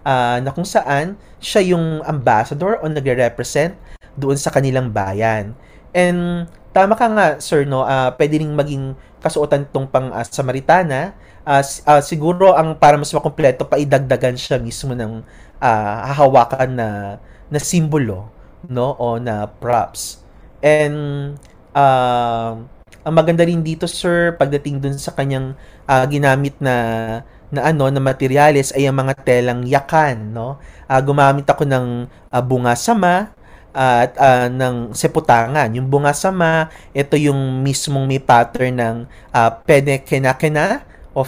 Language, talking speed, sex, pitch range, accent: English, 140 wpm, male, 125-155 Hz, Filipino